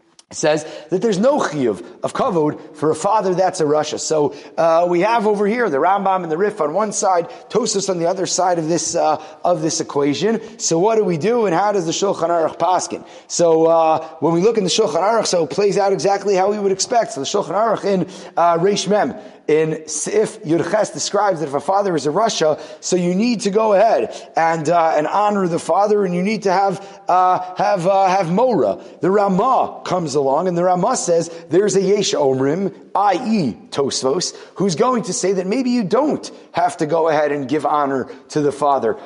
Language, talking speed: English, 215 wpm